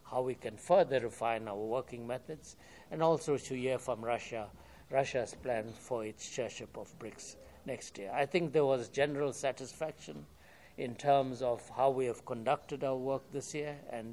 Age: 60-79